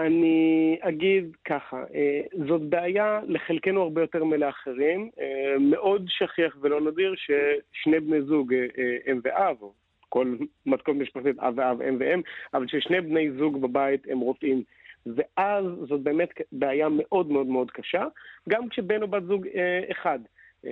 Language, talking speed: Hebrew, 135 wpm